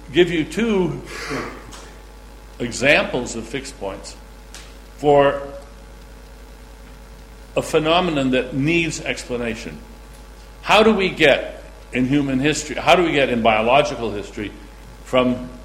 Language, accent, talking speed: English, American, 105 wpm